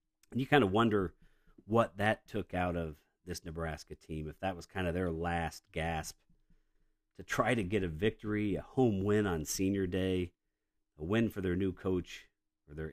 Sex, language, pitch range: male, English, 80-105 Hz